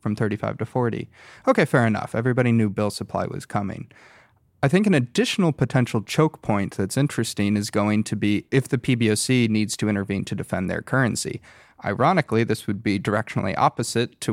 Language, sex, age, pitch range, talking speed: English, male, 30-49, 105-130 Hz, 180 wpm